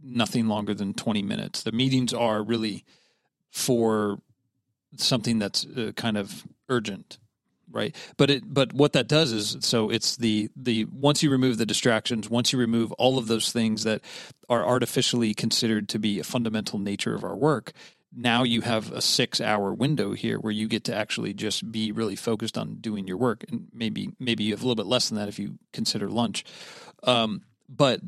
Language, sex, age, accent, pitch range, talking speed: English, male, 40-59, American, 110-130 Hz, 190 wpm